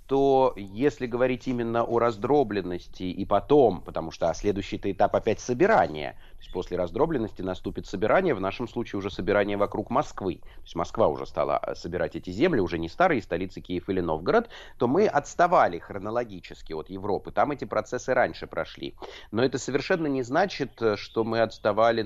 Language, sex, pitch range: Russian, male, 90-115 Hz